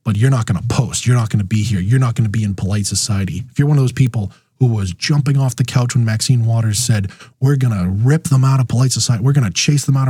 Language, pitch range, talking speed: English, 110-135 Hz, 305 wpm